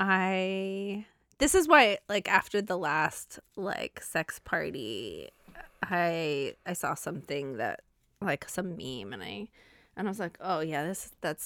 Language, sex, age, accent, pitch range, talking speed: English, female, 20-39, American, 165-210 Hz, 150 wpm